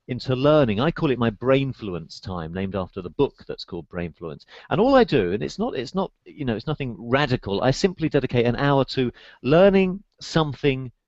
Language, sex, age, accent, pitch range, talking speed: English, male, 40-59, British, 115-145 Hz, 200 wpm